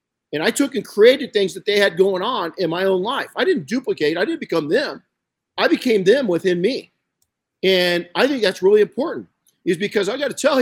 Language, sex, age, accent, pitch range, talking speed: English, male, 50-69, American, 160-230 Hz, 220 wpm